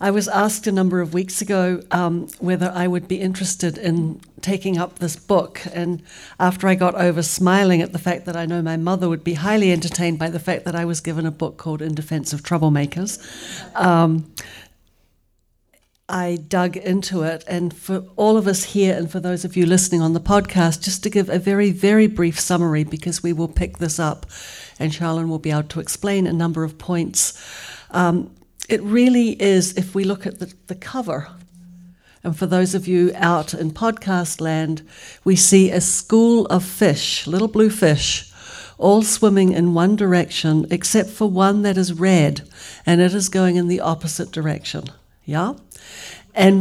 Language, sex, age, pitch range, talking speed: English, female, 60-79, 170-195 Hz, 185 wpm